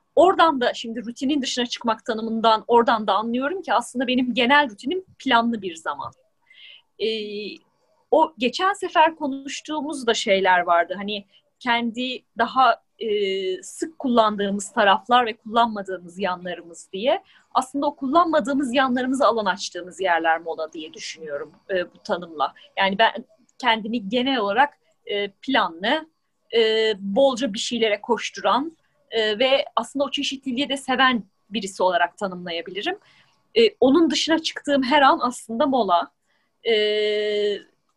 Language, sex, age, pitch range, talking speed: Turkish, female, 30-49, 200-280 Hz, 130 wpm